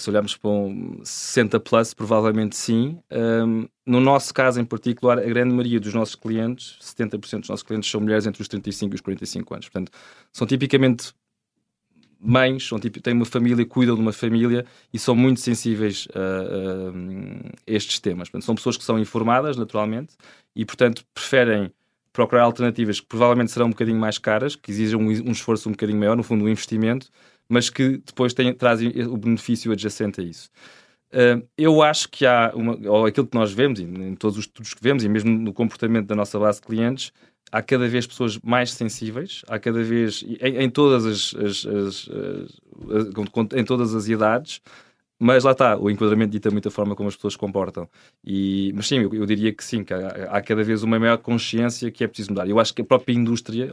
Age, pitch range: 20-39, 105-120 Hz